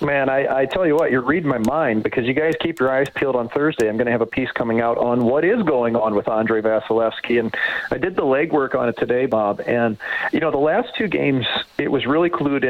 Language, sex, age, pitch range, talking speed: English, male, 40-59, 115-150 Hz, 260 wpm